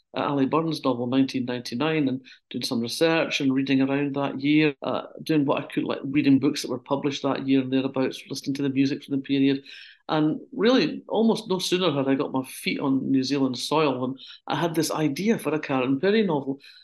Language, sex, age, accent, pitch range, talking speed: English, male, 60-79, British, 135-195 Hz, 210 wpm